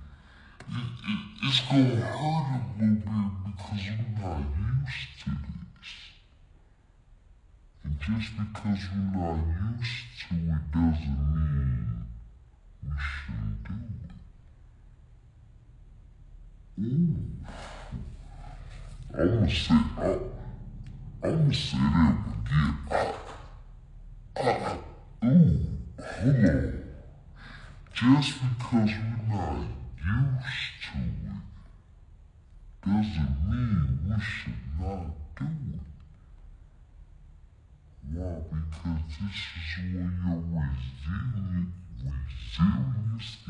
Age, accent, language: 60-79, American, English